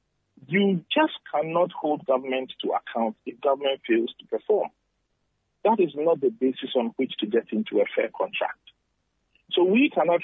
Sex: male